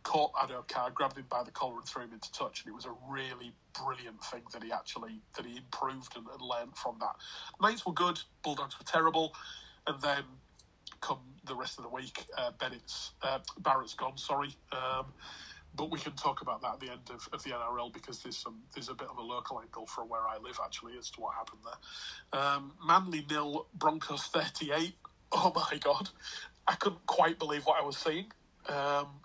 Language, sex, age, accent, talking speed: English, male, 30-49, British, 205 wpm